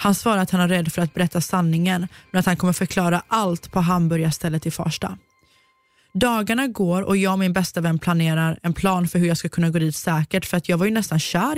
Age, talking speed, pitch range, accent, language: 20-39, 245 wpm, 165-210 Hz, native, Swedish